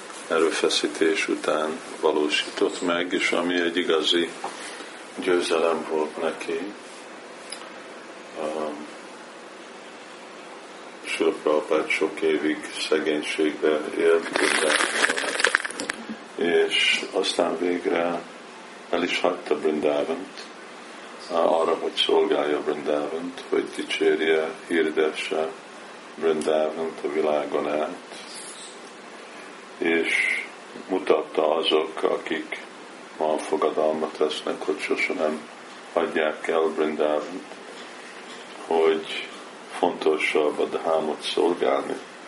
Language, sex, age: Hungarian, male, 50-69